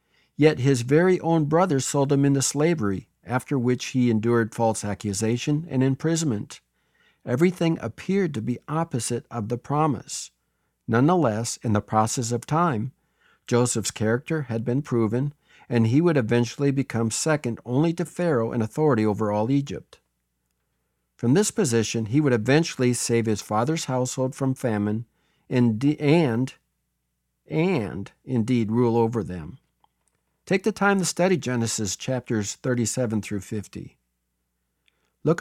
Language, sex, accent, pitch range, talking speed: English, male, American, 105-140 Hz, 135 wpm